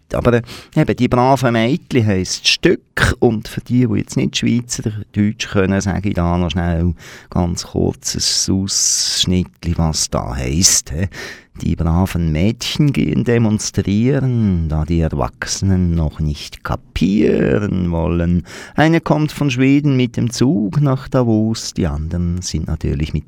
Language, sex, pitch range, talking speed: German, male, 85-130 Hz, 135 wpm